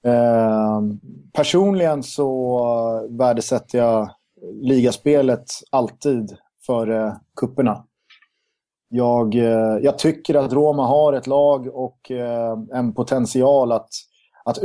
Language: Swedish